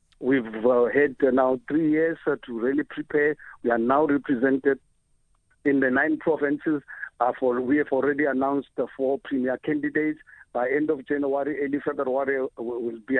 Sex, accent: male, South African